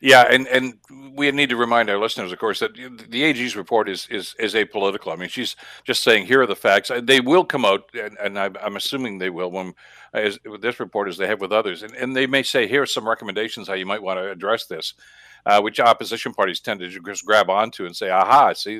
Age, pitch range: 60-79, 100-125 Hz